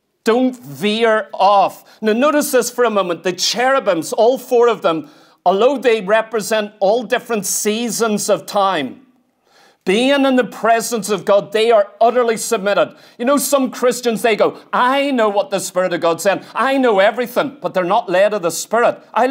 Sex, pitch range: male, 205-255 Hz